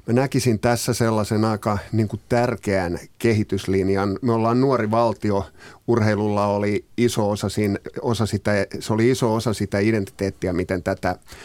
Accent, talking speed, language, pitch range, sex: native, 140 wpm, Finnish, 100-120 Hz, male